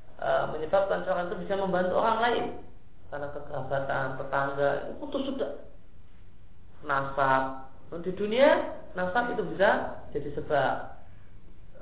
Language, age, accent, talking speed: Indonesian, 30-49, native, 105 wpm